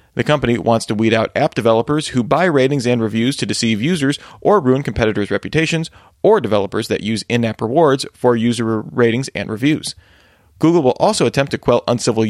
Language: English